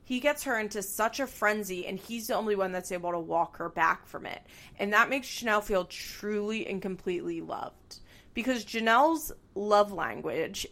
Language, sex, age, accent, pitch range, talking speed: English, female, 20-39, American, 185-235 Hz, 185 wpm